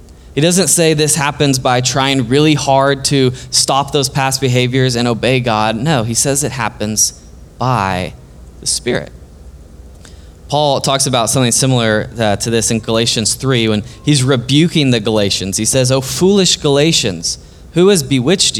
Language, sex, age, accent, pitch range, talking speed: English, male, 20-39, American, 110-145 Hz, 155 wpm